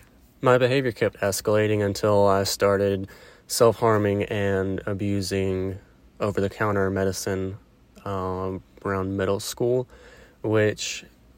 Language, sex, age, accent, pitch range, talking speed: English, male, 20-39, American, 95-110 Hz, 90 wpm